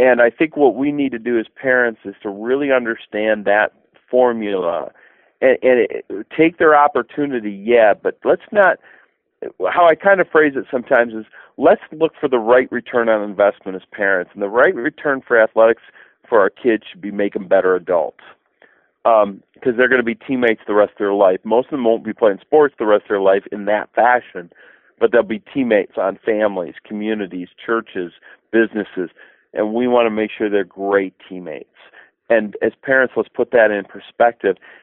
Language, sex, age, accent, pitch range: Japanese, male, 40-59, American, 105-135 Hz